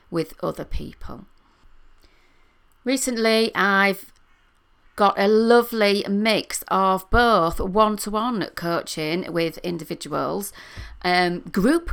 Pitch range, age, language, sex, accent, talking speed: 170-215 Hz, 40-59, English, female, British, 95 wpm